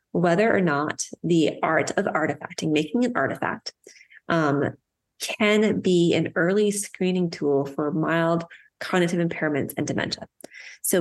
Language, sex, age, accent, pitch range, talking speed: English, female, 30-49, American, 155-185 Hz, 130 wpm